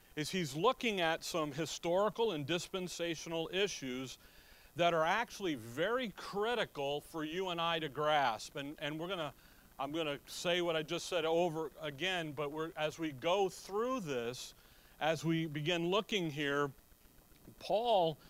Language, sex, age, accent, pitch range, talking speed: English, male, 40-59, American, 150-185 Hz, 155 wpm